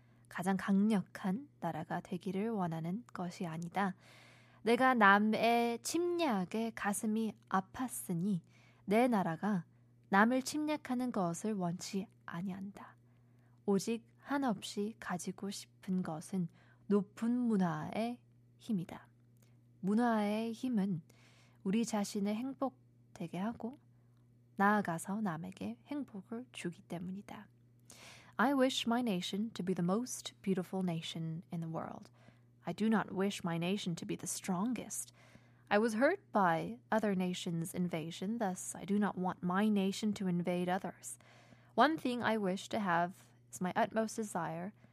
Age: 20-39